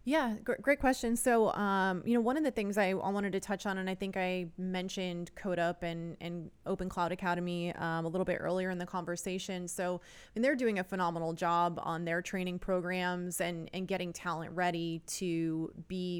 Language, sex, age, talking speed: English, female, 20-39, 205 wpm